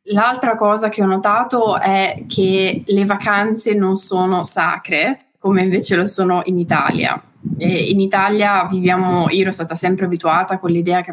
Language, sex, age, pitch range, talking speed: Italian, female, 20-39, 175-200 Hz, 160 wpm